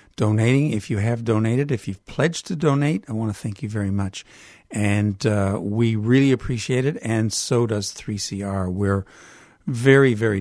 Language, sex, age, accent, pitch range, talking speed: English, male, 50-69, American, 105-130 Hz, 175 wpm